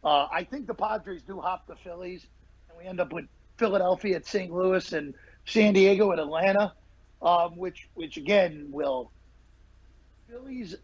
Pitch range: 180-235 Hz